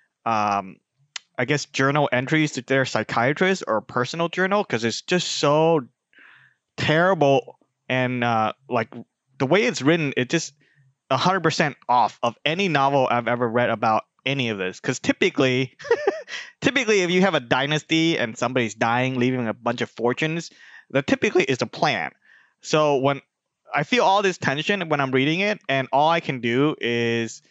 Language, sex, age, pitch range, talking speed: English, male, 20-39, 125-170 Hz, 170 wpm